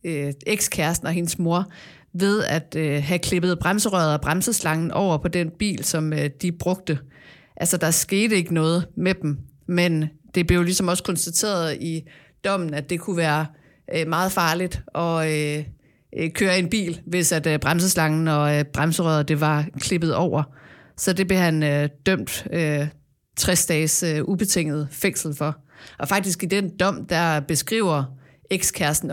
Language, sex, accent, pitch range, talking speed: Danish, female, native, 150-180 Hz, 165 wpm